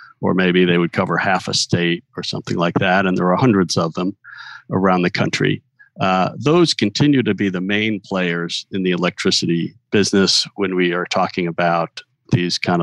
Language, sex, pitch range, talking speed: English, male, 90-110 Hz, 185 wpm